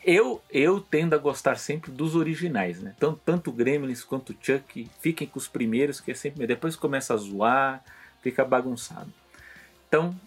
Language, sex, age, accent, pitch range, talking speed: Portuguese, male, 30-49, Brazilian, 110-160 Hz, 170 wpm